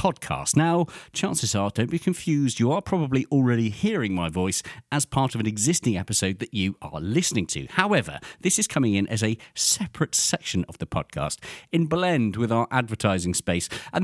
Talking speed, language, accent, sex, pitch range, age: 190 wpm, English, British, male, 105-165 Hz, 40-59